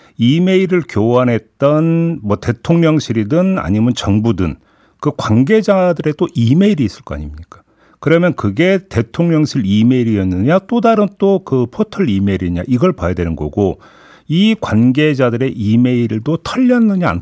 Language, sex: Korean, male